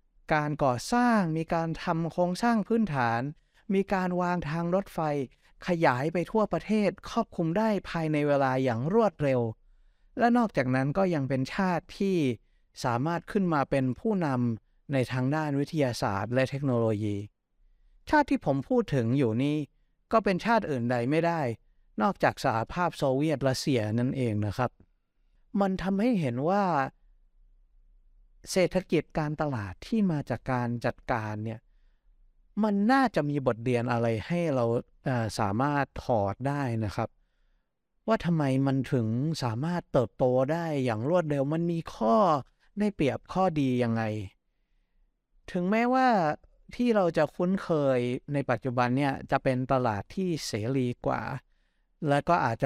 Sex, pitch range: male, 125-175 Hz